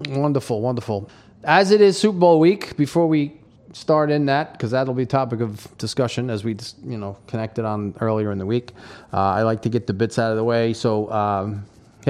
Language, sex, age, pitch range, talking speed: English, male, 30-49, 115-150 Hz, 215 wpm